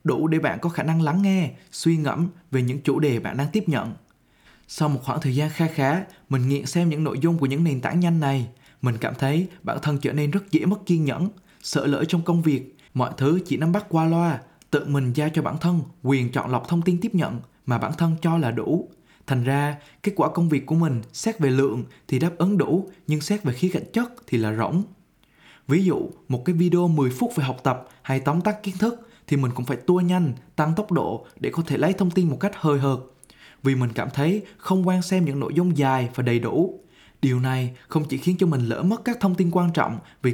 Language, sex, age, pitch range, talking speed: Vietnamese, male, 20-39, 140-180 Hz, 250 wpm